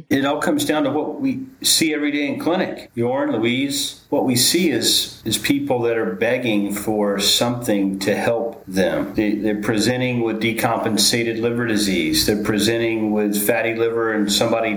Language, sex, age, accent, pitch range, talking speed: English, male, 40-59, American, 100-125 Hz, 165 wpm